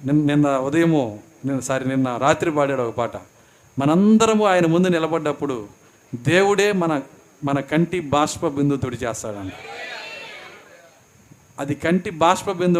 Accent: native